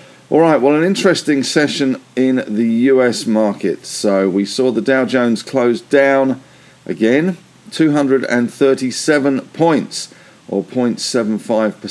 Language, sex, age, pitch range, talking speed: English, male, 50-69, 110-140 Hz, 110 wpm